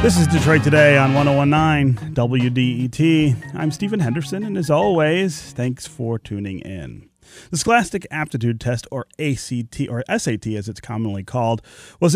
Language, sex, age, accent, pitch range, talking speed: English, male, 30-49, American, 115-160 Hz, 150 wpm